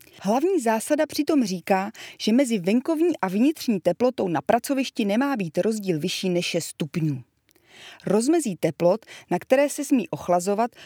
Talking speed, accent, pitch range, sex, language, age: 145 wpm, native, 170-255 Hz, female, Czech, 30-49